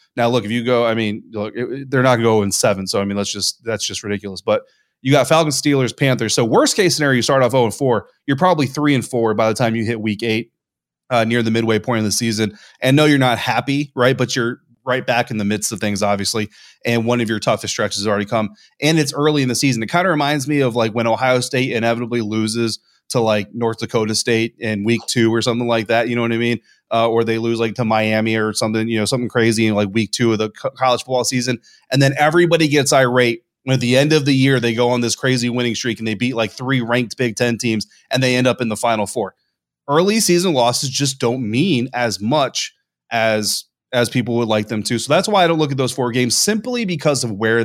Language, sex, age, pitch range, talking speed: English, male, 30-49, 110-130 Hz, 260 wpm